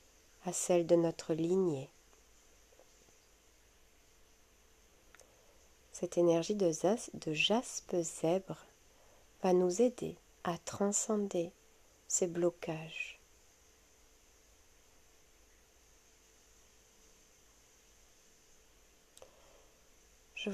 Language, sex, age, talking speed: French, female, 40-59, 55 wpm